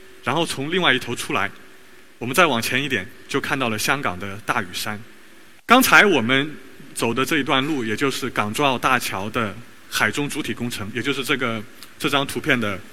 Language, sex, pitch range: Chinese, male, 120-165 Hz